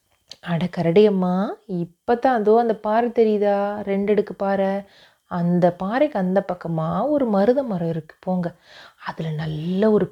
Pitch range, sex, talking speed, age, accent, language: 160-205 Hz, female, 120 wpm, 30-49, native, Tamil